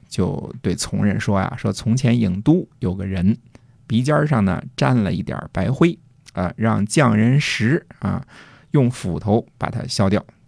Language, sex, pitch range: Chinese, male, 100-130 Hz